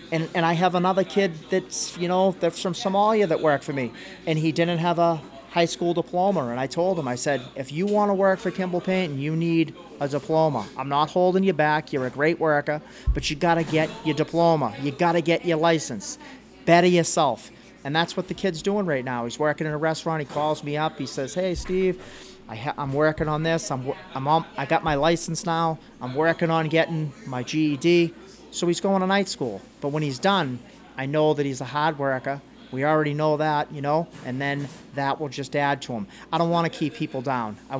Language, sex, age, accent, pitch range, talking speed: English, male, 40-59, American, 145-175 Hz, 235 wpm